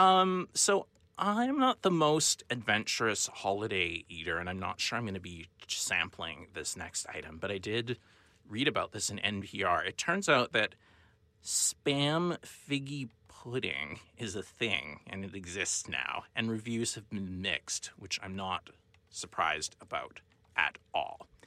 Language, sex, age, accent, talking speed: English, male, 30-49, American, 155 wpm